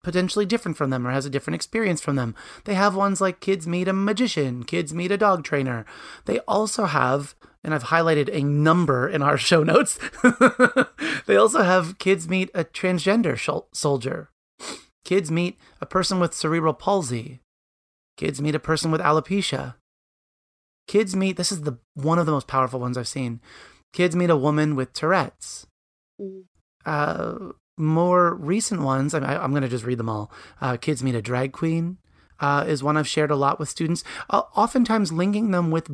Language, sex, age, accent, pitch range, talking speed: English, male, 30-49, American, 140-185 Hz, 175 wpm